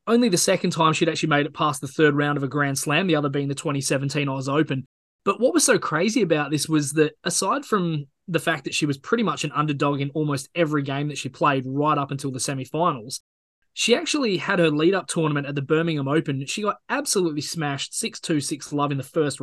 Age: 20-39